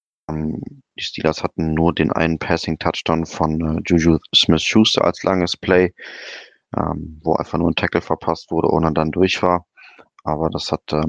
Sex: male